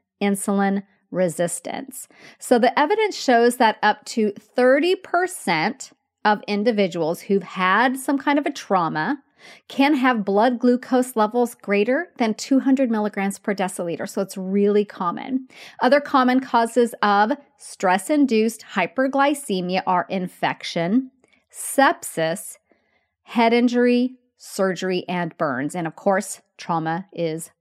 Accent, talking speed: American, 115 wpm